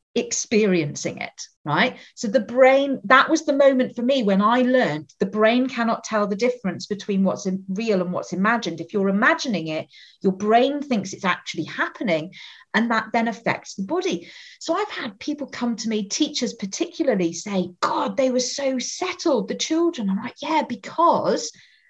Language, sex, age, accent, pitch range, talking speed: English, female, 40-59, British, 195-265 Hz, 175 wpm